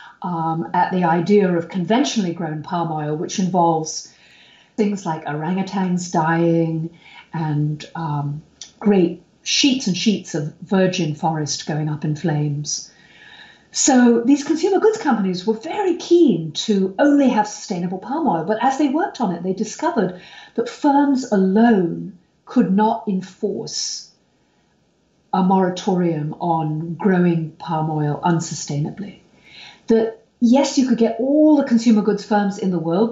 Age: 50-69